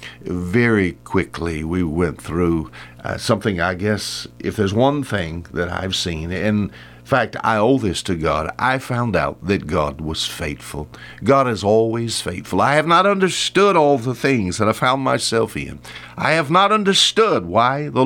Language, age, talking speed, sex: English, 60-79, 175 wpm, male